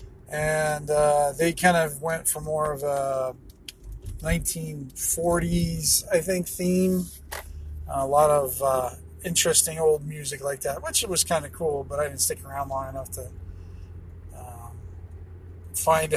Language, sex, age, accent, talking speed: English, male, 20-39, American, 140 wpm